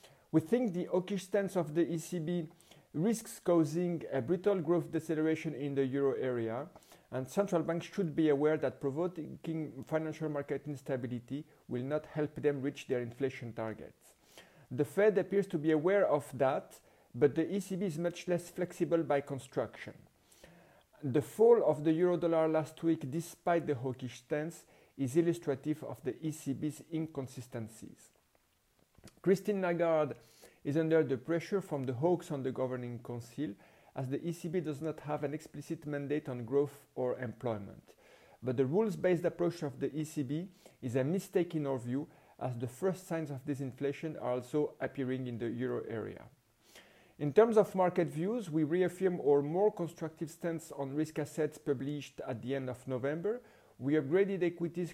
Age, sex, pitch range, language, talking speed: 50-69, male, 140-170 Hz, French, 160 wpm